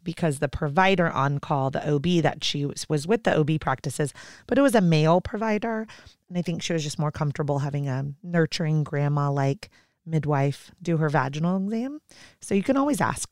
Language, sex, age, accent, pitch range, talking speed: English, female, 30-49, American, 155-190 Hz, 190 wpm